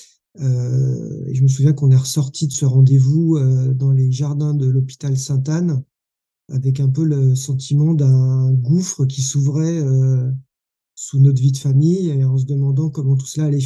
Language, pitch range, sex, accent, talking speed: French, 135-160 Hz, male, French, 185 wpm